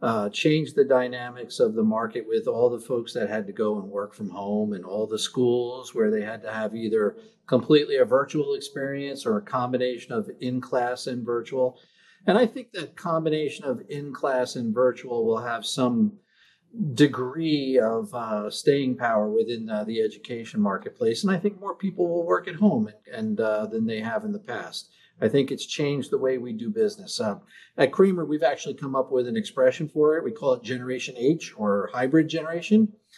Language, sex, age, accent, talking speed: English, male, 50-69, American, 195 wpm